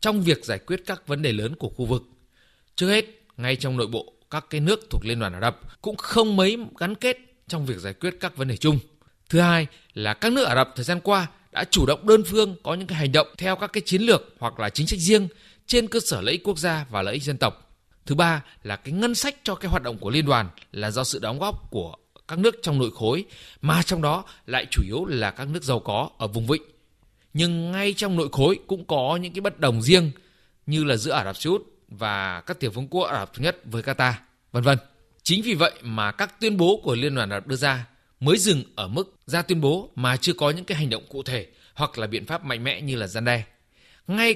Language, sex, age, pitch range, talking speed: Vietnamese, male, 20-39, 125-185 Hz, 255 wpm